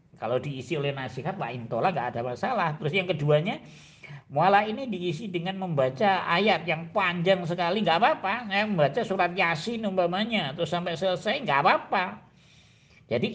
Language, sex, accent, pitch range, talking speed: Indonesian, male, native, 120-160 Hz, 155 wpm